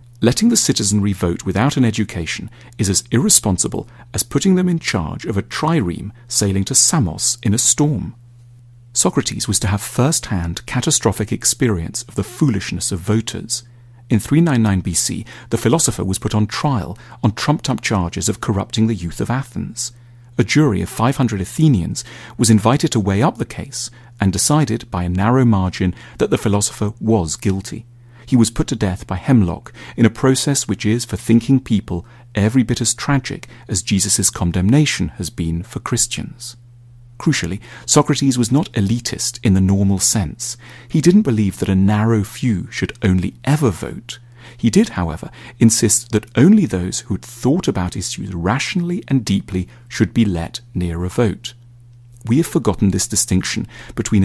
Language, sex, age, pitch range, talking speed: English, male, 40-59, 100-125 Hz, 165 wpm